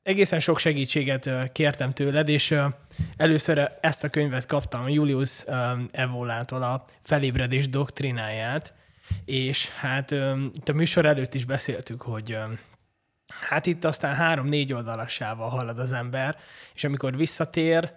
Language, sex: Hungarian, male